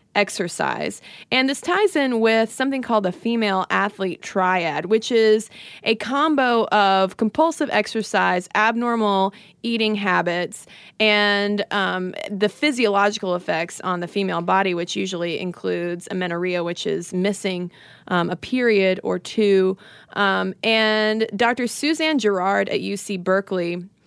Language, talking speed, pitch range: English, 125 wpm, 195-250 Hz